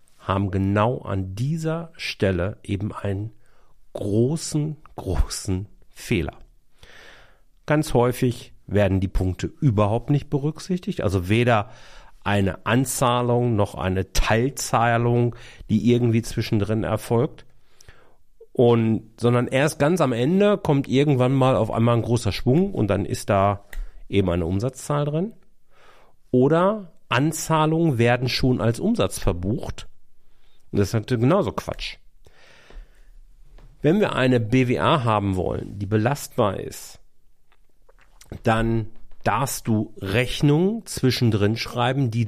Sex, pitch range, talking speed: male, 105-135 Hz, 110 wpm